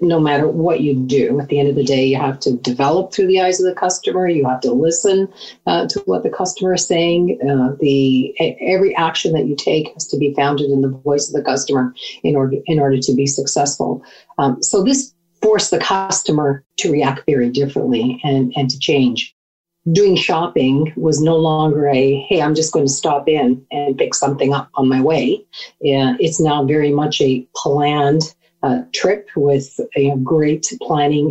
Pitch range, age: 140-165 Hz, 40-59